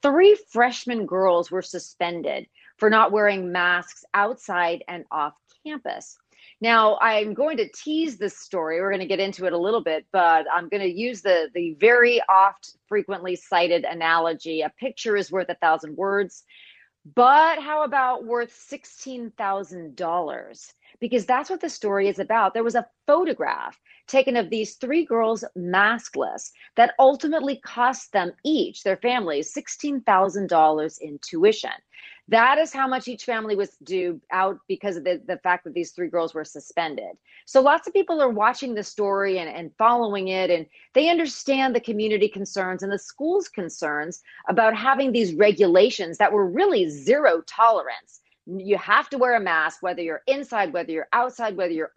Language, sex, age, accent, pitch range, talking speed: English, female, 40-59, American, 185-265 Hz, 165 wpm